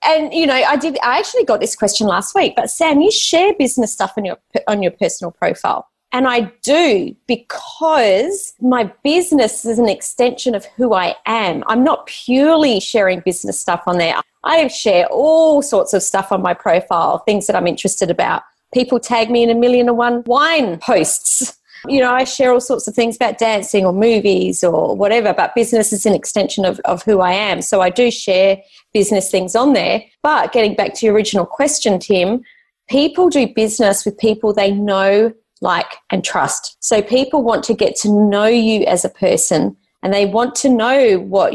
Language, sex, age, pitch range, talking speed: English, female, 30-49, 200-255 Hz, 195 wpm